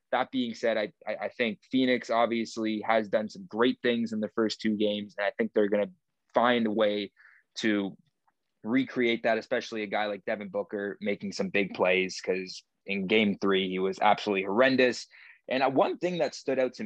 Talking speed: 195 wpm